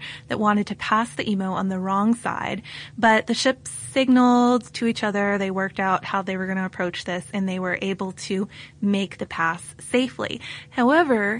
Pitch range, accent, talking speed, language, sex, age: 190-230 Hz, American, 195 wpm, English, female, 20-39